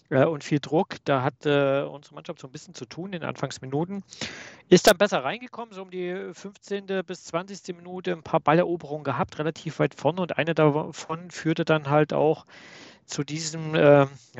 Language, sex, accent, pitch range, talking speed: German, male, German, 125-155 Hz, 185 wpm